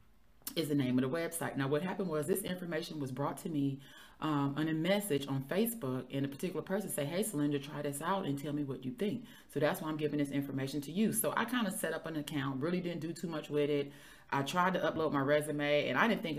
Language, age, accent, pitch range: English, 30-49, American, 140-160 Hz